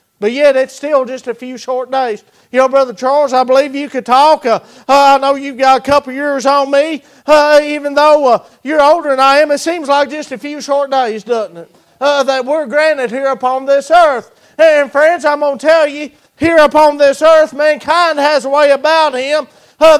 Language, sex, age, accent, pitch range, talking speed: English, male, 40-59, American, 275-305 Hz, 220 wpm